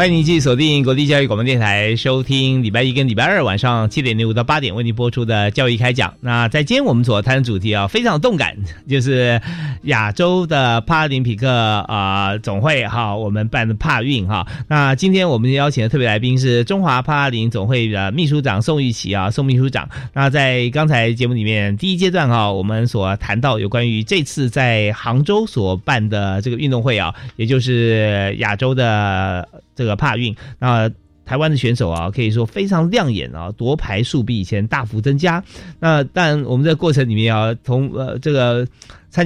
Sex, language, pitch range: male, Chinese, 110-140 Hz